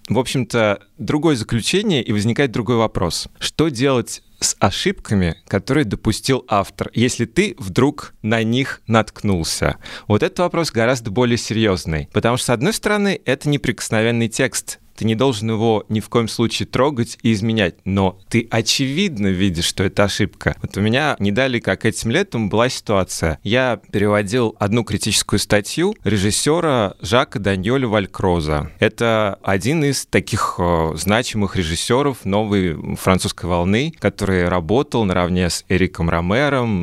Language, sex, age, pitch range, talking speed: Russian, male, 30-49, 95-125 Hz, 140 wpm